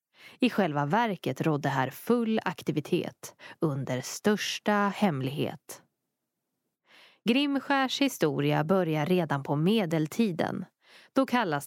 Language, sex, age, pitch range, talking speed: Swedish, female, 20-39, 150-220 Hz, 95 wpm